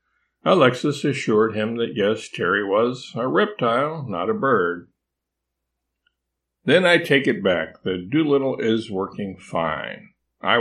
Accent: American